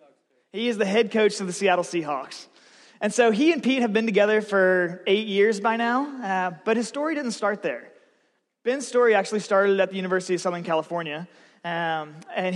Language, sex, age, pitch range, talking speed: English, male, 20-39, 170-225 Hz, 195 wpm